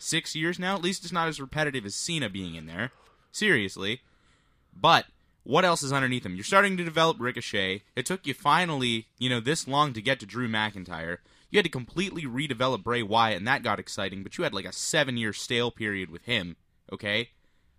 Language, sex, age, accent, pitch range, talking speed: English, male, 20-39, American, 110-155 Hz, 205 wpm